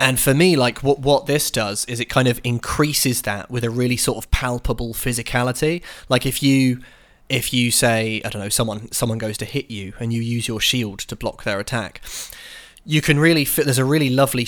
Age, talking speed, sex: 20-39, 220 wpm, male